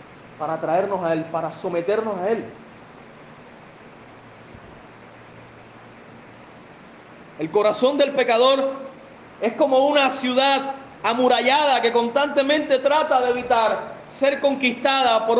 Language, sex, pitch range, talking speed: Spanish, male, 250-300 Hz, 95 wpm